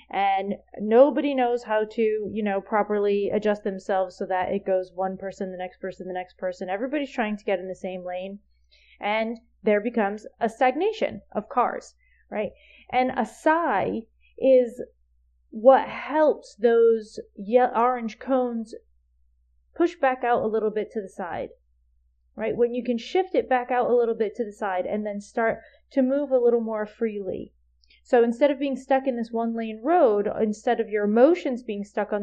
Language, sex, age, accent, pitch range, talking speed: English, female, 30-49, American, 195-255 Hz, 180 wpm